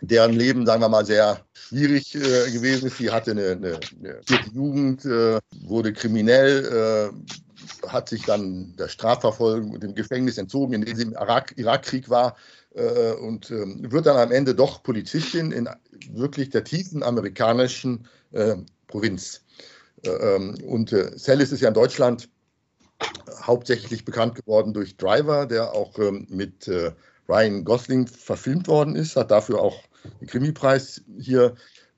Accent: German